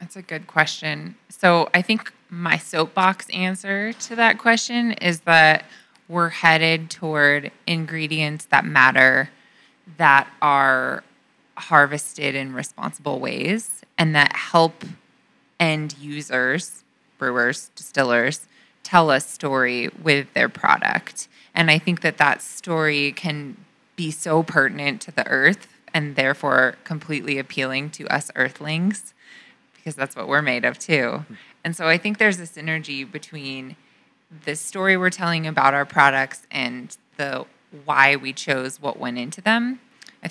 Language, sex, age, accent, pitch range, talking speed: English, female, 20-39, American, 145-190 Hz, 135 wpm